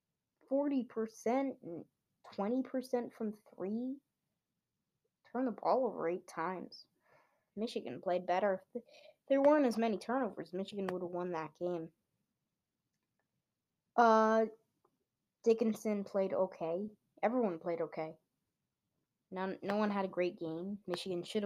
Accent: American